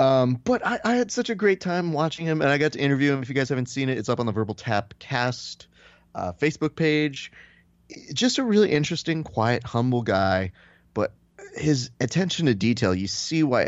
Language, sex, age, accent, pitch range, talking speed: English, male, 30-49, American, 95-130 Hz, 210 wpm